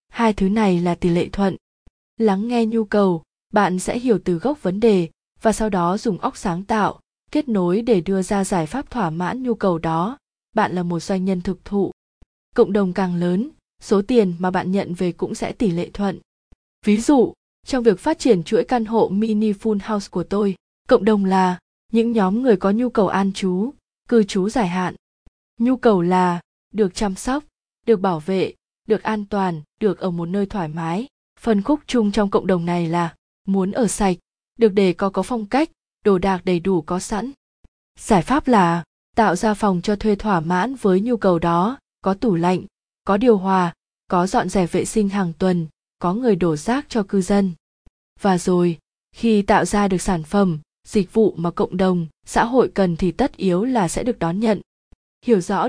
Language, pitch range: Vietnamese, 180-225 Hz